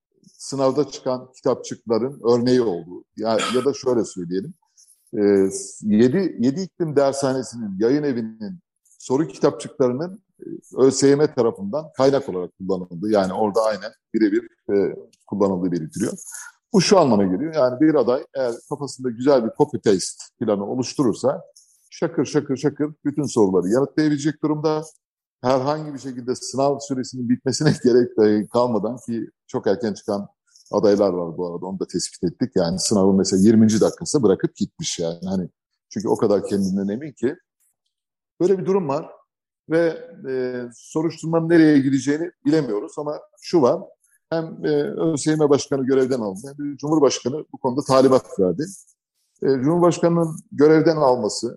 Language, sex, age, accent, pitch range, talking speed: Turkish, male, 60-79, native, 110-155 Hz, 135 wpm